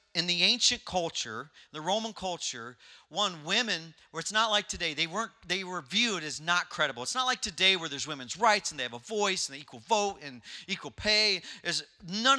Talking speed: 215 wpm